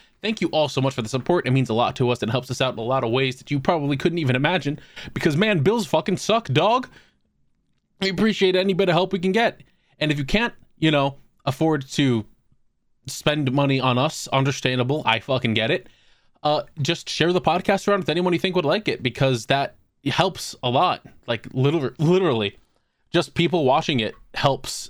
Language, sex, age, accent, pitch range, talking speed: English, male, 20-39, American, 125-165 Hz, 210 wpm